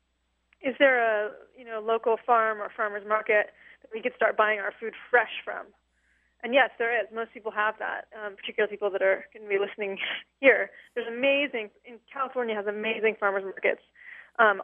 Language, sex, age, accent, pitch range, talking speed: English, female, 20-39, American, 210-245 Hz, 185 wpm